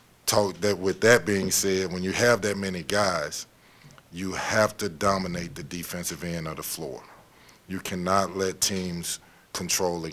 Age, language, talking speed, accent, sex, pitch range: 40-59, English, 160 wpm, American, male, 90-105 Hz